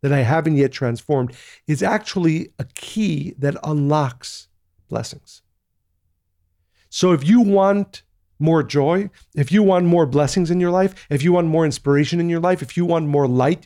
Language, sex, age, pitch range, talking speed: English, male, 40-59, 135-175 Hz, 175 wpm